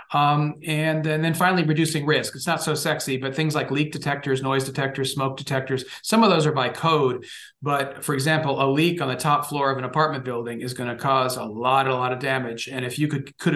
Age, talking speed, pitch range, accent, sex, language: 40-59, 240 wpm, 130-155 Hz, American, male, English